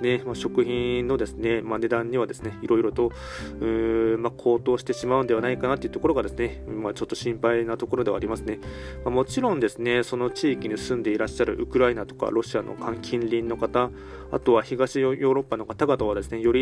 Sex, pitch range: male, 110-130 Hz